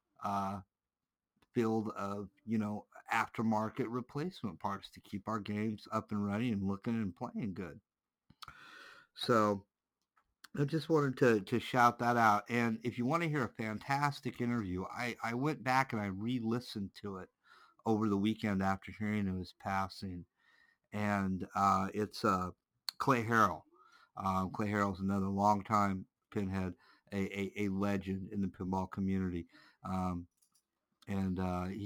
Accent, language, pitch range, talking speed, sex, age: American, English, 100-120 Hz, 150 wpm, male, 50-69